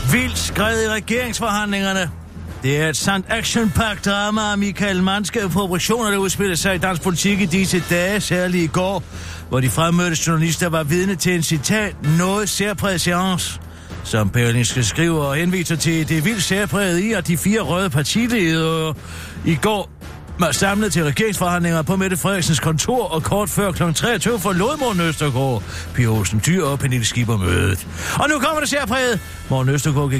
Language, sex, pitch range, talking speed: Danish, male, 135-195 Hz, 165 wpm